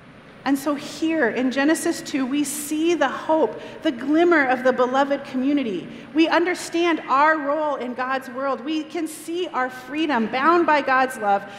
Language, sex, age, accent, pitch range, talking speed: English, female, 40-59, American, 240-295 Hz, 165 wpm